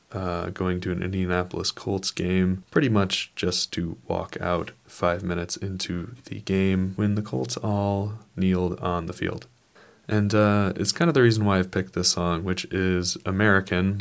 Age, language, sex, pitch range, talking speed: 20-39, English, male, 90-105 Hz, 175 wpm